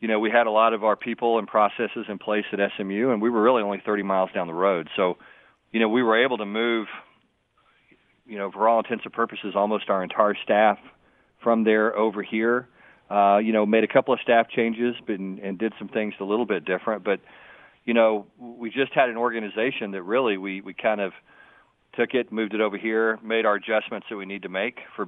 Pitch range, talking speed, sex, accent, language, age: 100-115 Hz, 225 wpm, male, American, English, 40-59